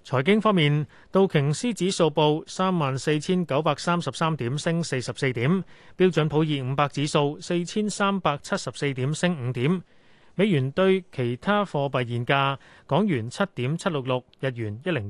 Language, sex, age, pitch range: Chinese, male, 30-49, 125-180 Hz